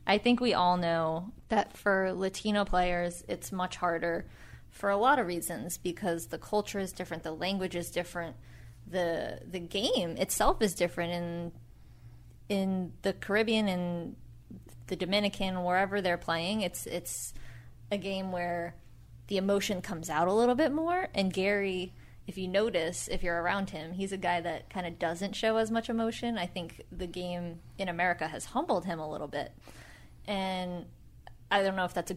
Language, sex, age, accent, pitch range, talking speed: English, female, 20-39, American, 170-200 Hz, 175 wpm